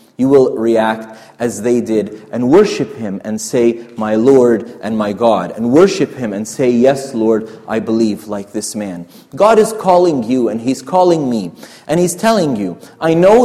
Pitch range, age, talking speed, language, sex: 120-165 Hz, 30-49, 185 wpm, English, male